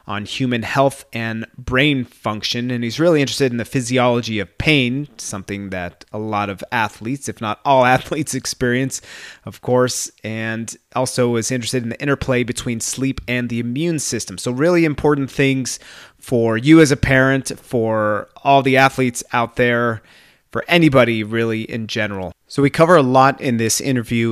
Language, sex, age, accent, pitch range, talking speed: English, male, 30-49, American, 110-135 Hz, 170 wpm